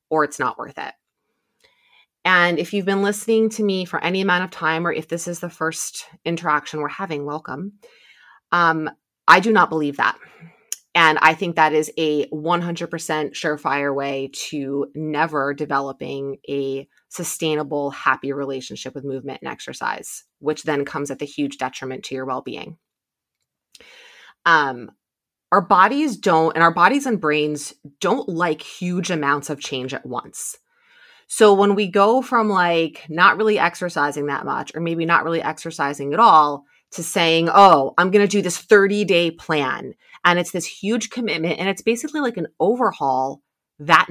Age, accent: 30-49, American